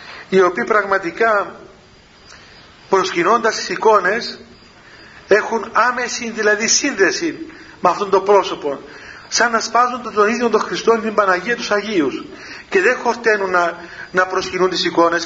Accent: native